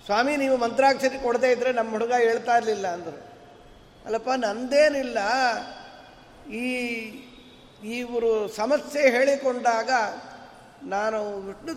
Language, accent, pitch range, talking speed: Kannada, native, 225-270 Hz, 85 wpm